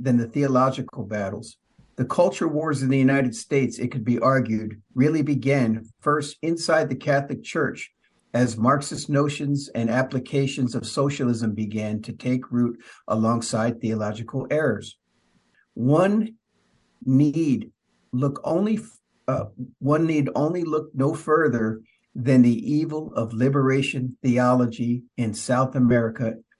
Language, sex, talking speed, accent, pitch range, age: English, male, 130 wpm, American, 120-145 Hz, 50-69